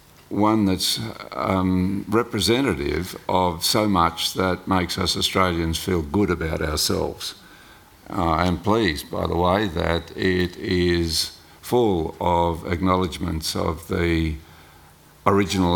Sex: male